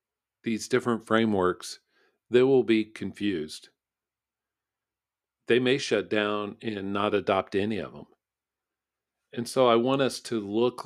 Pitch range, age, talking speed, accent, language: 100-115 Hz, 50-69, 135 wpm, American, English